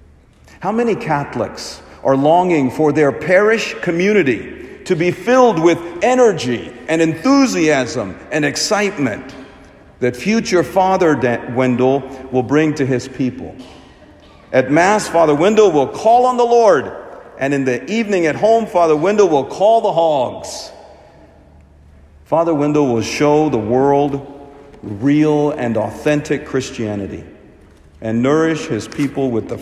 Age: 50-69